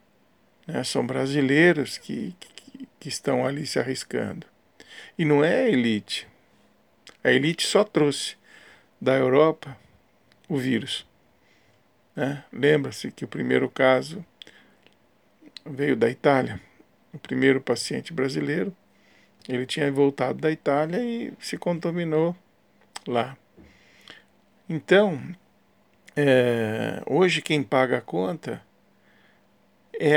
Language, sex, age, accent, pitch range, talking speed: Portuguese, male, 50-69, Brazilian, 130-160 Hz, 105 wpm